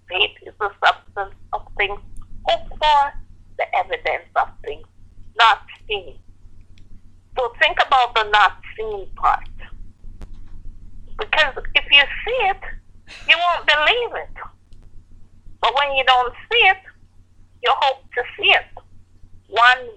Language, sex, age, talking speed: English, female, 50-69, 125 wpm